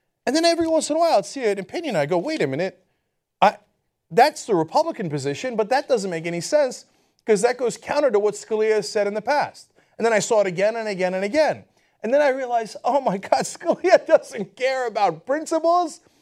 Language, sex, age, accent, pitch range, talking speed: English, male, 30-49, American, 195-285 Hz, 220 wpm